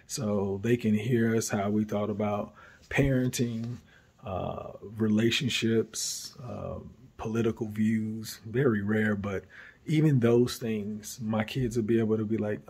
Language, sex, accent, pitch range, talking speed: English, male, American, 110-135 Hz, 135 wpm